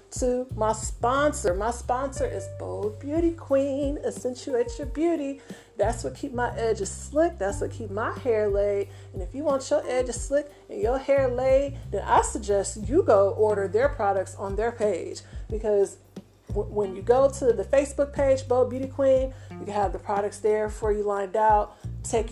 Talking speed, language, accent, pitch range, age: 185 wpm, English, American, 200-275 Hz, 40-59